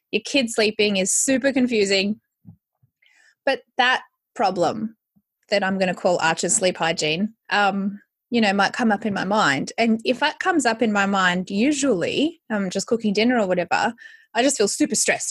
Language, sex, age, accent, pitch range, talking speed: English, female, 20-39, Australian, 200-275 Hz, 180 wpm